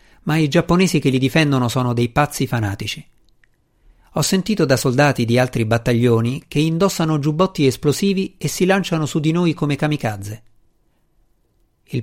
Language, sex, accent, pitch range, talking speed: Italian, male, native, 110-145 Hz, 150 wpm